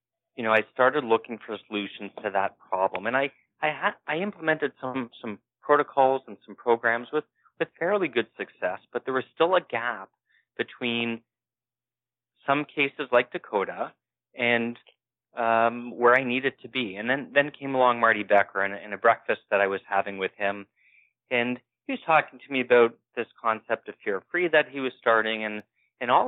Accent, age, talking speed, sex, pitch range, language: American, 30-49, 185 wpm, male, 105-130 Hz, English